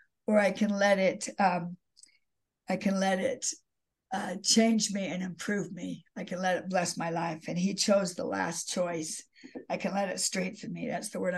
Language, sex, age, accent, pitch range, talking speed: English, female, 60-79, American, 180-215 Hz, 200 wpm